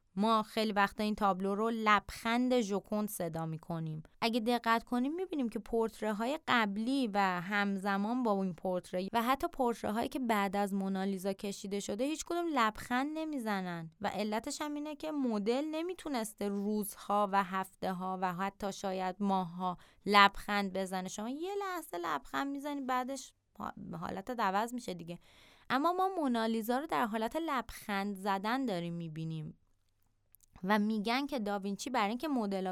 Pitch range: 190-250 Hz